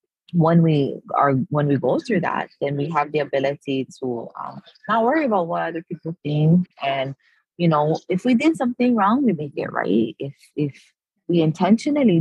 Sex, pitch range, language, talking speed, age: female, 135-170 Hz, English, 185 wpm, 20-39